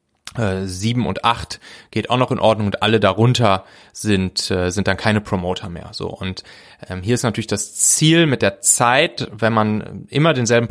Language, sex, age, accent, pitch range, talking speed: German, male, 30-49, German, 105-150 Hz, 180 wpm